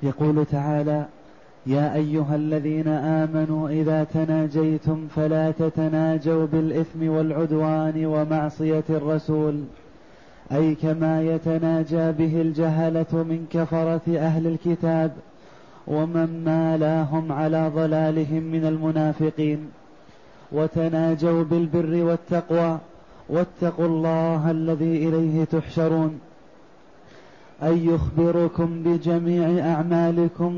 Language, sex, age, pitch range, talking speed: Arabic, male, 20-39, 160-170 Hz, 80 wpm